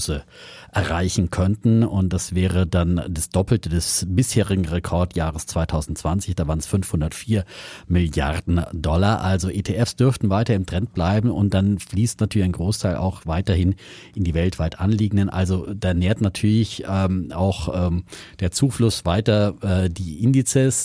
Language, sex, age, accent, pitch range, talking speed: German, male, 40-59, German, 90-105 Hz, 145 wpm